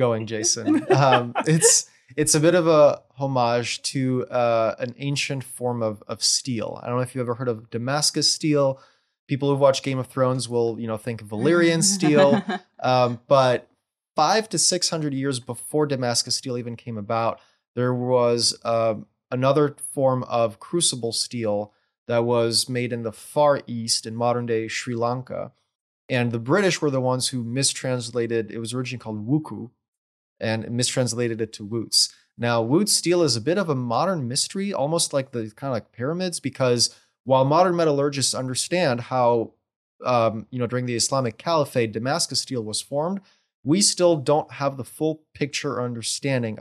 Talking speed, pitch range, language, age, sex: 170 wpm, 115-145 Hz, English, 20-39, male